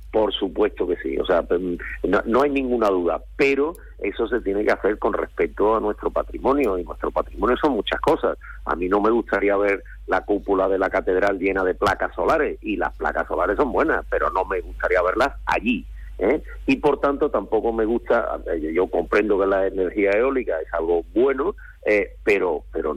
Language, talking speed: Spanish, 195 wpm